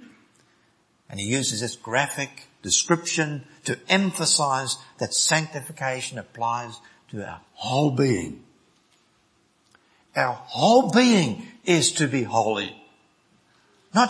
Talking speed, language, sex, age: 100 wpm, English, male, 60-79